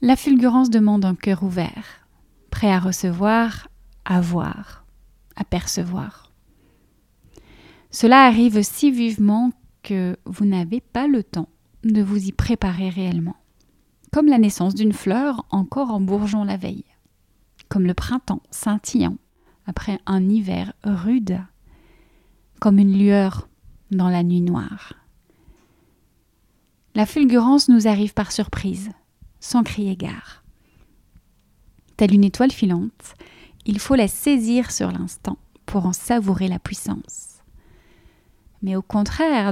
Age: 30-49